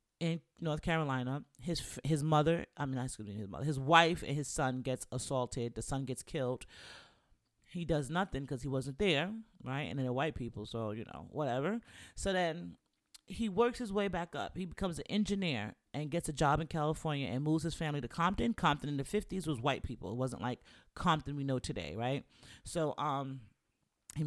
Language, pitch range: English, 130-170 Hz